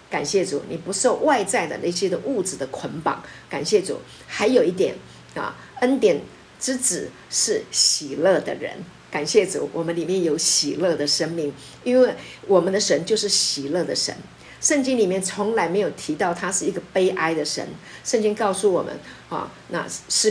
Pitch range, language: 180-275 Hz, Chinese